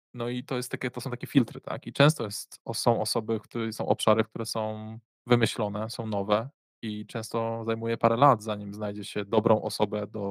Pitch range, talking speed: 105-120 Hz, 200 wpm